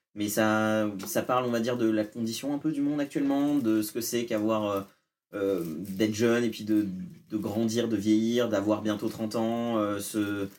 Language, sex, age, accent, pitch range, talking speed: French, male, 20-39, French, 110-135 Hz, 200 wpm